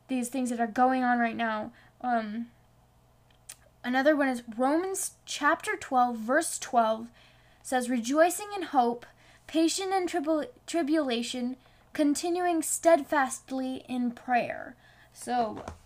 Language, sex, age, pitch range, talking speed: English, female, 10-29, 235-300 Hz, 110 wpm